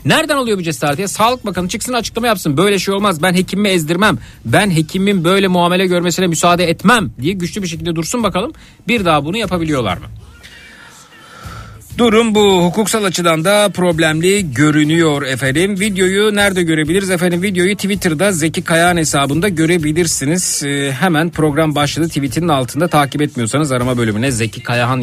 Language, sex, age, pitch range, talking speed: Turkish, male, 50-69, 145-185 Hz, 150 wpm